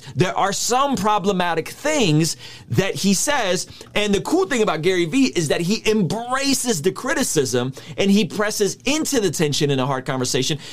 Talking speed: 175 wpm